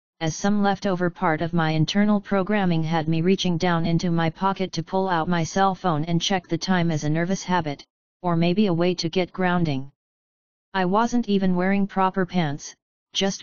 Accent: American